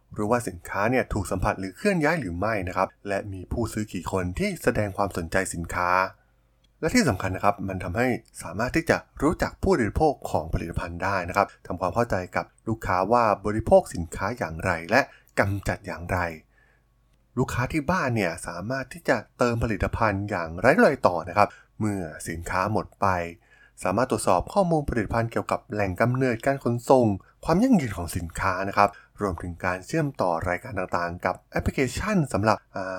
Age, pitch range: 20-39, 90-120 Hz